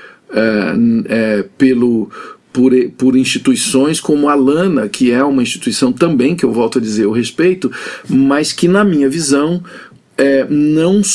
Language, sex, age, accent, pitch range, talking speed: Portuguese, male, 50-69, Brazilian, 130-180 Hz, 130 wpm